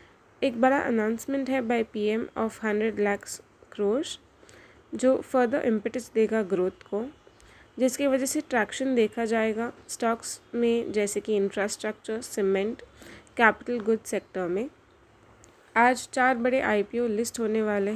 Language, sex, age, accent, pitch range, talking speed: Hindi, female, 20-39, native, 205-240 Hz, 130 wpm